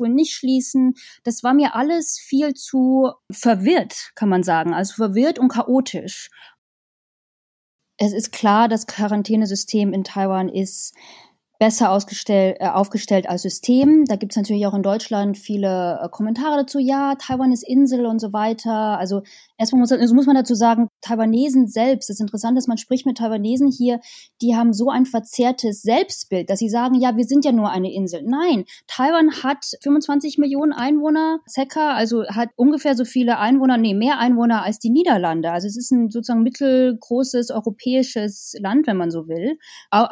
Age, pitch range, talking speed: 20-39, 205-260 Hz, 170 wpm